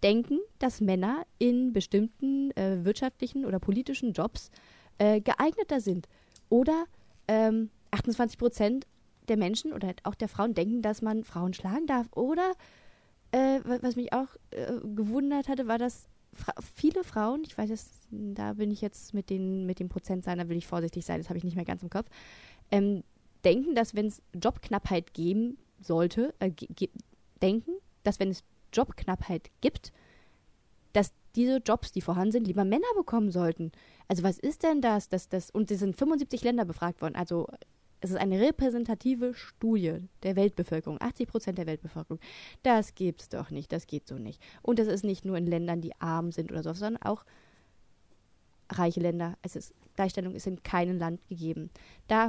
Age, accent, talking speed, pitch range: 20-39, German, 175 wpm, 180-240 Hz